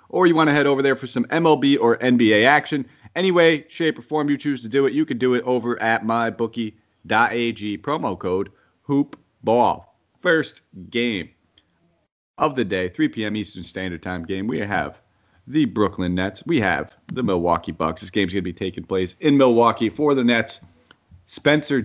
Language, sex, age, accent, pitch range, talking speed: English, male, 30-49, American, 95-125 Hz, 185 wpm